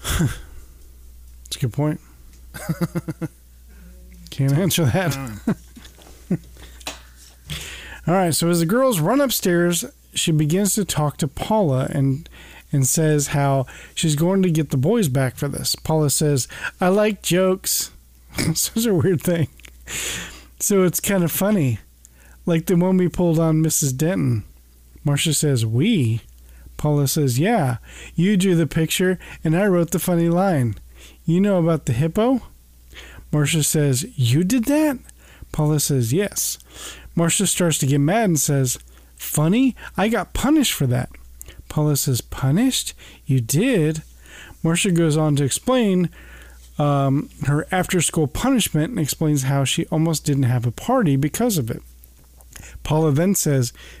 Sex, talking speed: male, 140 wpm